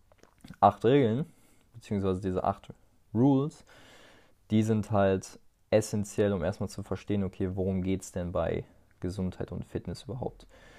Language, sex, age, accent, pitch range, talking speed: German, male, 20-39, German, 100-115 Hz, 135 wpm